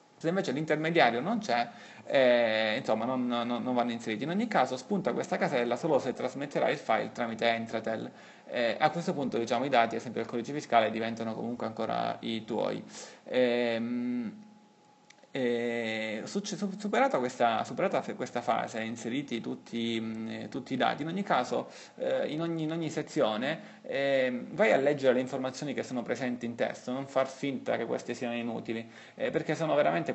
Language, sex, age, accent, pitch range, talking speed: Italian, male, 30-49, native, 115-160 Hz, 165 wpm